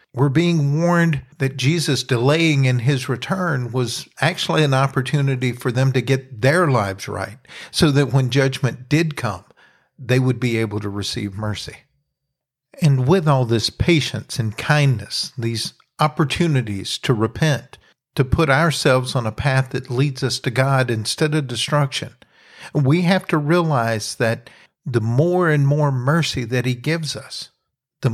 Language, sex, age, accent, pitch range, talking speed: English, male, 50-69, American, 125-150 Hz, 155 wpm